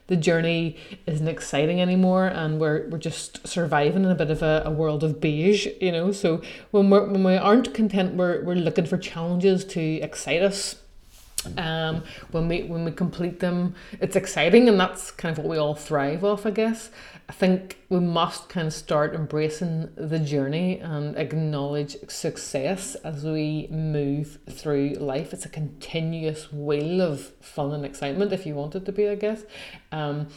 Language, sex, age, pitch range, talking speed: English, female, 30-49, 155-190 Hz, 180 wpm